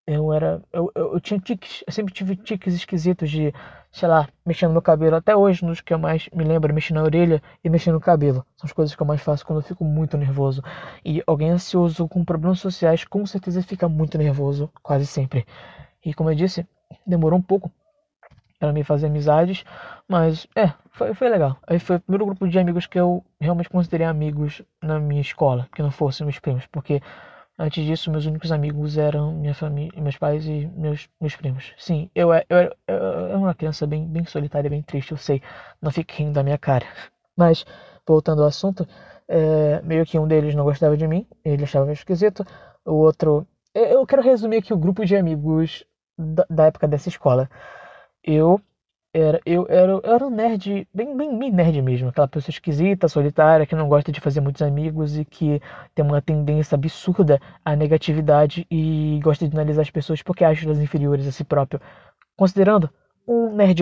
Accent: Brazilian